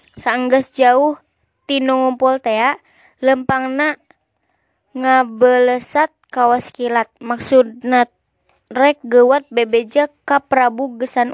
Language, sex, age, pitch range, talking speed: Indonesian, female, 20-39, 245-275 Hz, 80 wpm